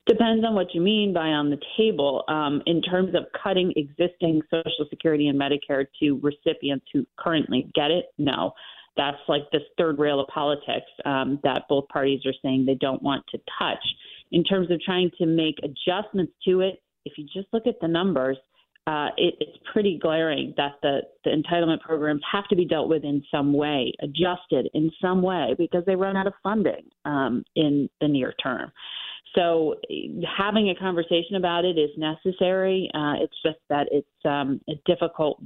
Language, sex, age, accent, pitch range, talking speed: English, female, 30-49, American, 145-180 Hz, 185 wpm